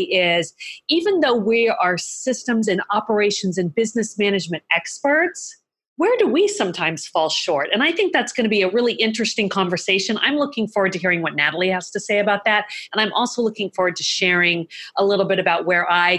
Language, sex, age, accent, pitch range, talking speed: English, female, 40-59, American, 180-240 Hz, 200 wpm